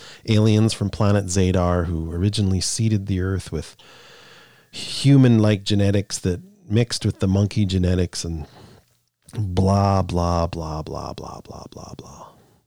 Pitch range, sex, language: 85-110 Hz, male, English